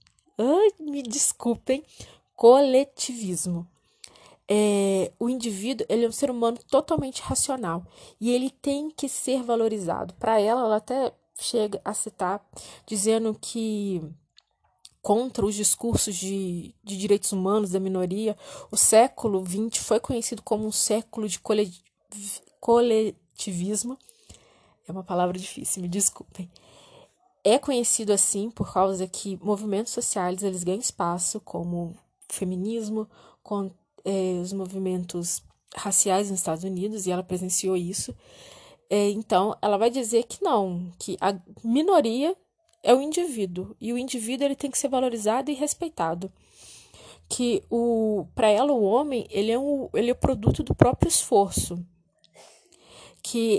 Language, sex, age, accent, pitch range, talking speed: Portuguese, female, 20-39, Brazilian, 190-245 Hz, 130 wpm